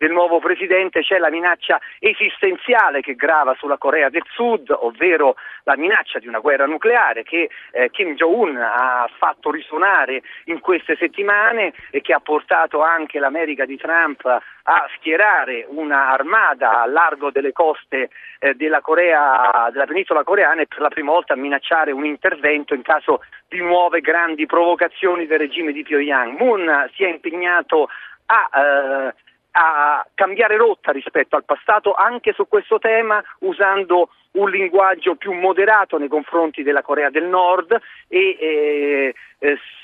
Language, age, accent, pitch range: Italian, 40-59, native, 145-195 Hz